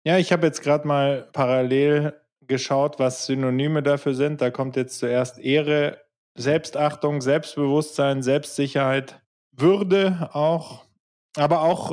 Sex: male